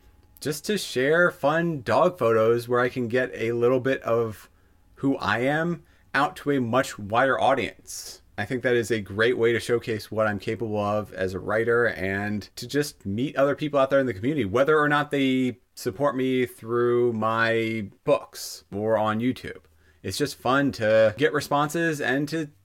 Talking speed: 185 wpm